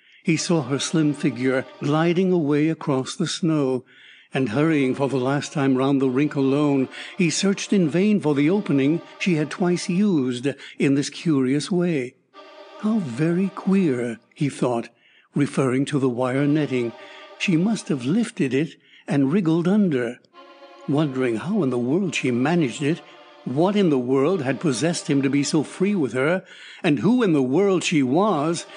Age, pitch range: 60-79, 135-180 Hz